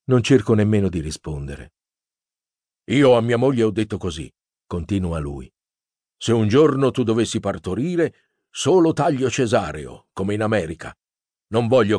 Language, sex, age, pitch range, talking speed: Italian, male, 50-69, 90-120 Hz, 140 wpm